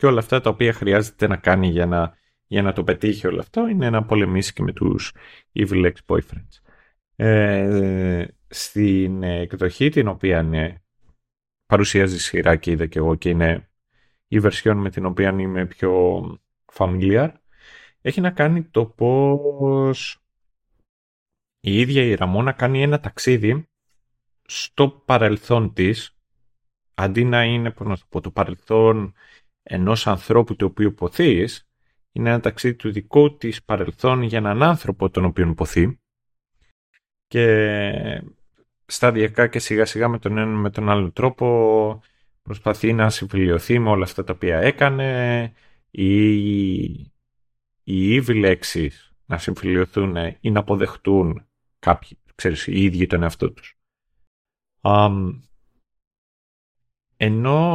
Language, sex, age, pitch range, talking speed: Greek, male, 30-49, 95-120 Hz, 145 wpm